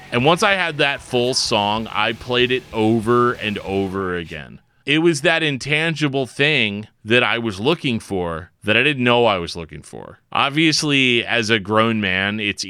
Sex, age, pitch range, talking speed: male, 30-49, 100-130 Hz, 180 wpm